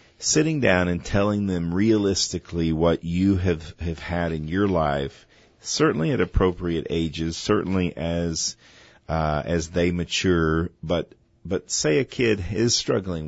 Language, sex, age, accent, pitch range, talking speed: English, male, 50-69, American, 80-95 Hz, 140 wpm